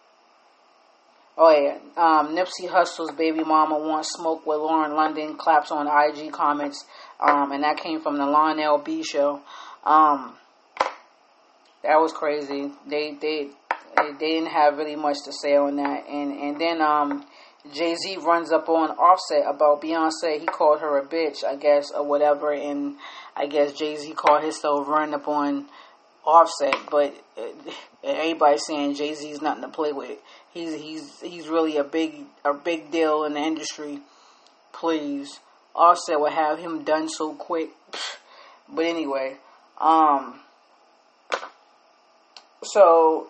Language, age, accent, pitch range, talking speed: English, 20-39, American, 145-165 Hz, 145 wpm